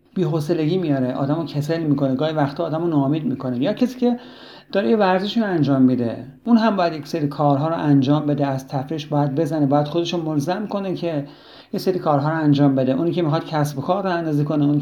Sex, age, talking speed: male, 50-69, 210 wpm